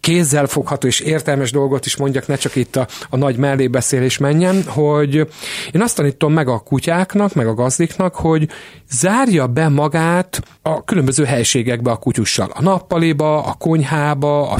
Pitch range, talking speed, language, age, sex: 130-165 Hz, 155 wpm, Hungarian, 40-59, male